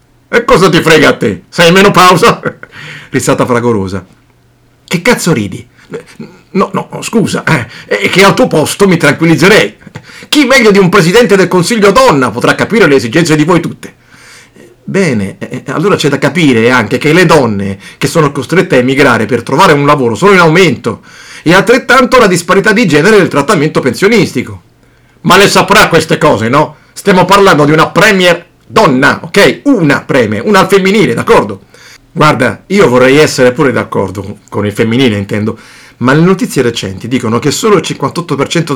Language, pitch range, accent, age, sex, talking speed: Italian, 120-190 Hz, native, 50-69, male, 170 wpm